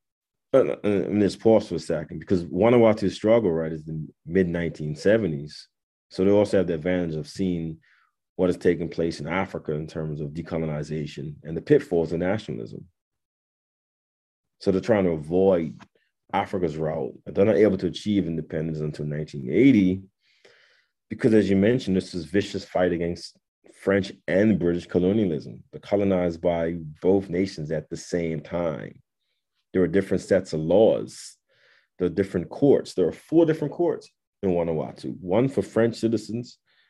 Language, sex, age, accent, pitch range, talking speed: English, male, 30-49, American, 80-100 Hz, 160 wpm